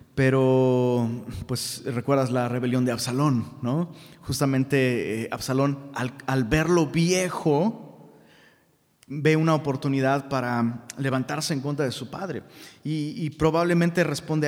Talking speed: 120 wpm